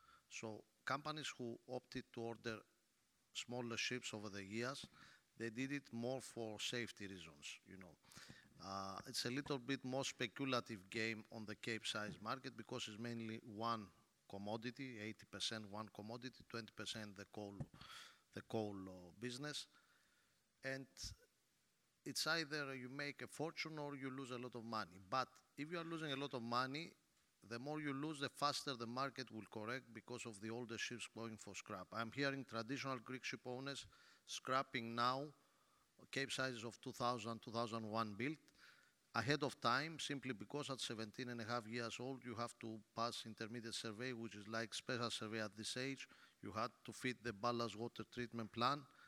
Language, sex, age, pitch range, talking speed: English, male, 50-69, 110-130 Hz, 170 wpm